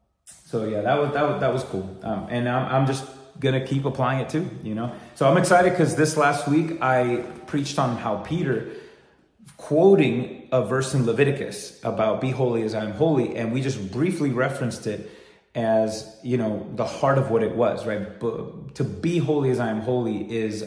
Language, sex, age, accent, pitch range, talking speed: English, male, 30-49, American, 110-140 Hz, 205 wpm